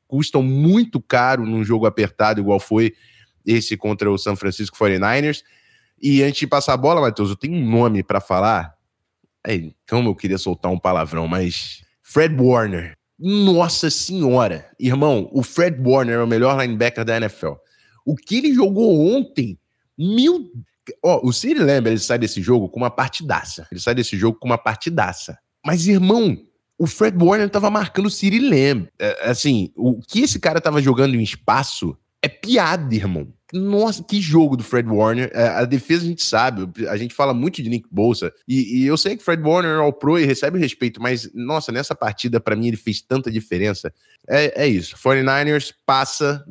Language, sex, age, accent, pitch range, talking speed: Portuguese, male, 20-39, Brazilian, 105-145 Hz, 185 wpm